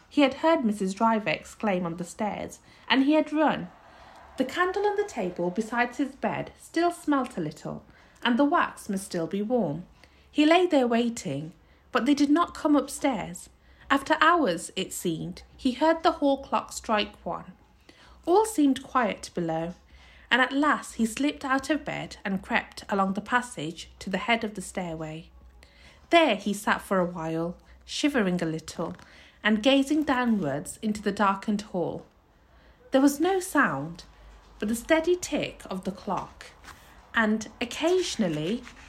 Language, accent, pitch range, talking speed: English, British, 180-275 Hz, 160 wpm